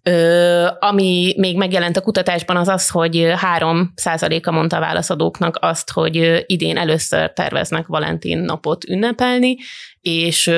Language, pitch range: Hungarian, 160-190 Hz